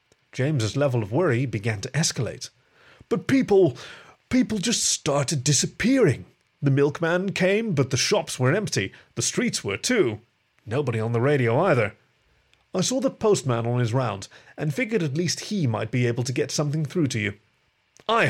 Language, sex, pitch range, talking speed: English, male, 115-155 Hz, 170 wpm